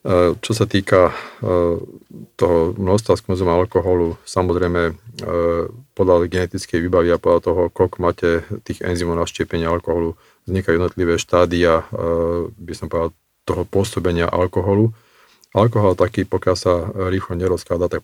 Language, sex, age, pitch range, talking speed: Slovak, male, 40-59, 85-95 Hz, 125 wpm